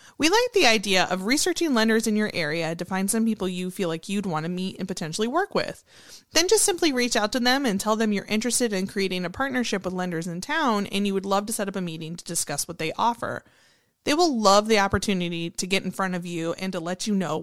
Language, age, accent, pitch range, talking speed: English, 30-49, American, 185-240 Hz, 260 wpm